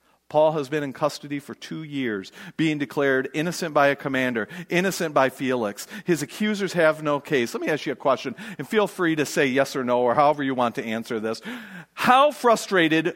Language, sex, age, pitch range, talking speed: English, male, 40-59, 150-250 Hz, 205 wpm